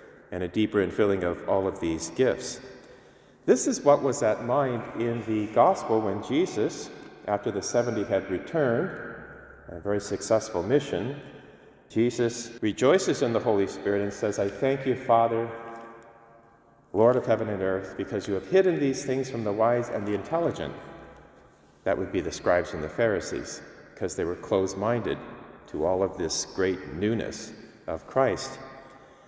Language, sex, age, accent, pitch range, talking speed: English, male, 40-59, American, 100-125 Hz, 160 wpm